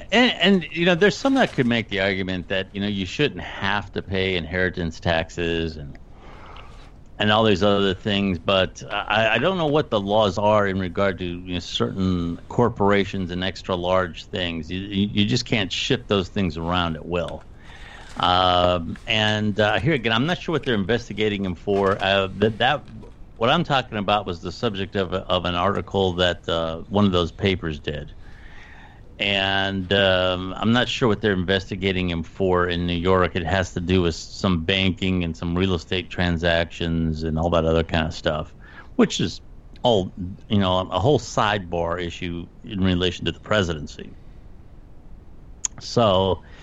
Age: 50-69